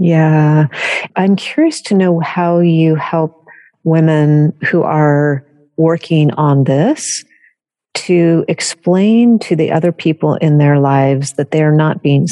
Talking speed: 130 wpm